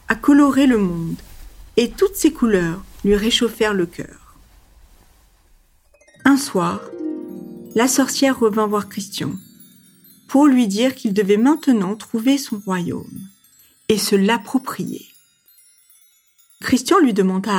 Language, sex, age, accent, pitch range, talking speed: French, female, 50-69, French, 190-275 Hz, 115 wpm